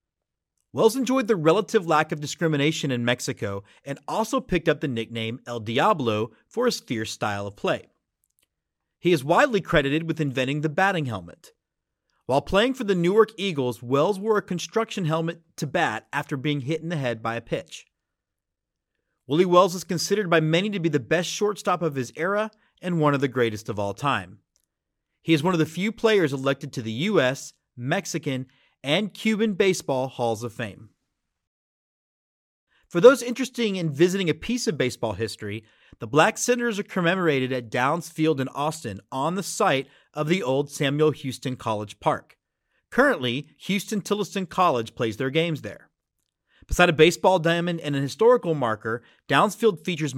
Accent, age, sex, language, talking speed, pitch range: American, 30-49, male, English, 170 wpm, 130-190 Hz